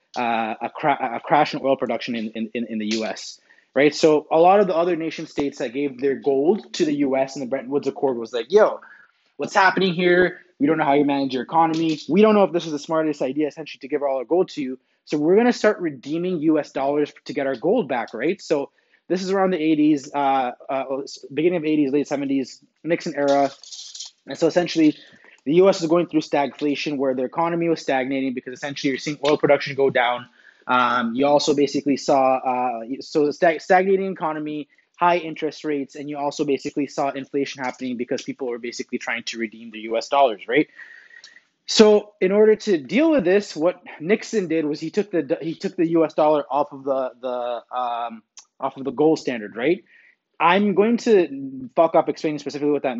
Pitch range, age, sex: 135-175 Hz, 20-39, male